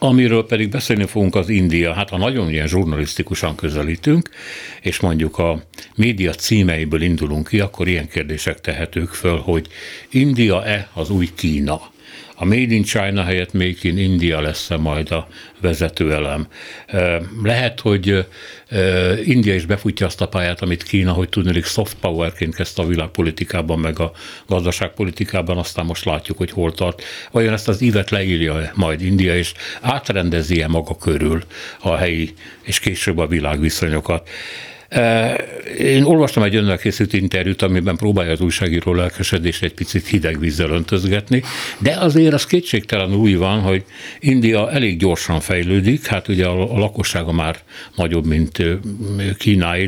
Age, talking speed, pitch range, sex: 60-79, 140 wpm, 85-105 Hz, male